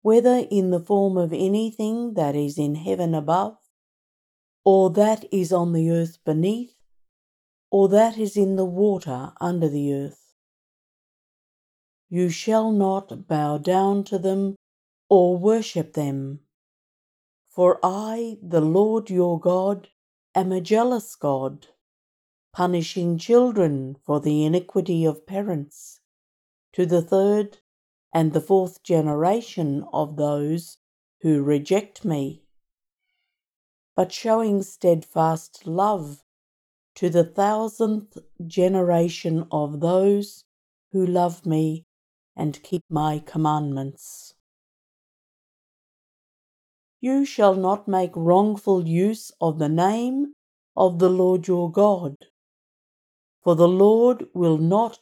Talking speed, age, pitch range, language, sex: 110 wpm, 60-79, 155-200 Hz, English, female